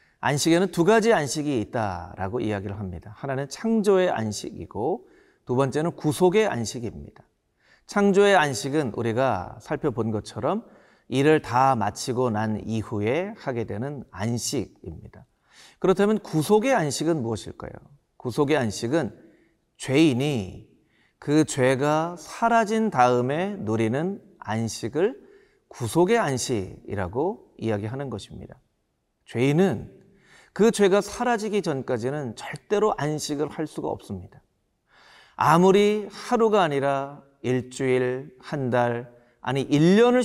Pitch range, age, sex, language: 120-185 Hz, 40-59, male, Korean